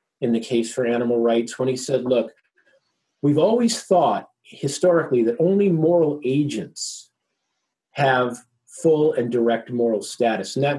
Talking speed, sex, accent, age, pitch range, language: 145 wpm, male, American, 40-59, 125-165 Hz, Swedish